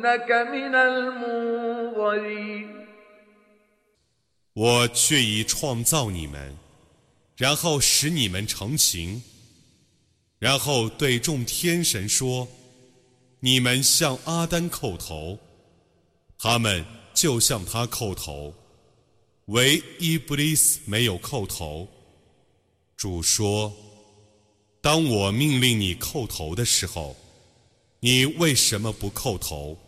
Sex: male